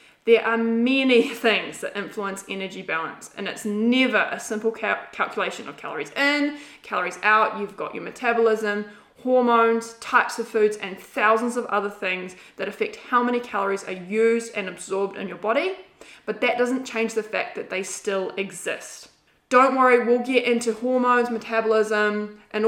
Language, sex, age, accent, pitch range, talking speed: English, female, 20-39, Australian, 205-240 Hz, 165 wpm